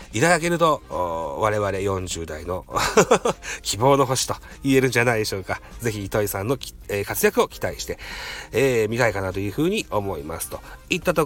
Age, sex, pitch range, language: 40-59, male, 105-140 Hz, Japanese